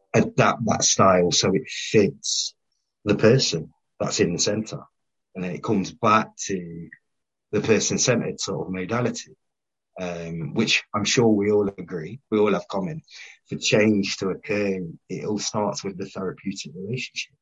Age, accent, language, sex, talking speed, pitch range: 30-49, British, English, male, 160 wpm, 95-145 Hz